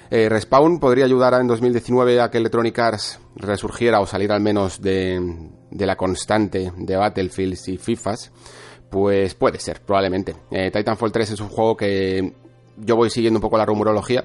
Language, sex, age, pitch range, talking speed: Spanish, male, 30-49, 95-115 Hz, 175 wpm